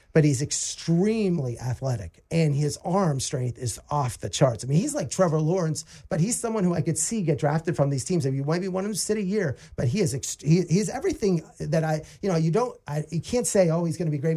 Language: English